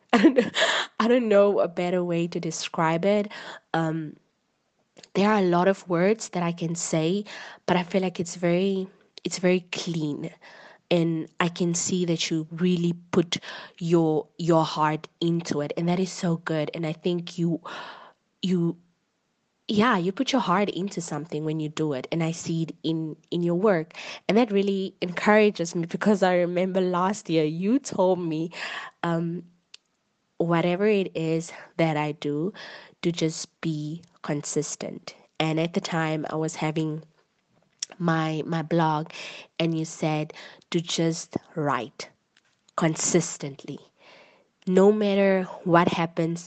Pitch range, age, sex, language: 160-190 Hz, 20-39, female, English